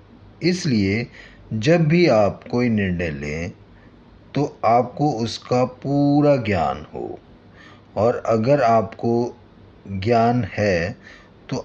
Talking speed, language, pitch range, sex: 100 wpm, Hindi, 100-135 Hz, male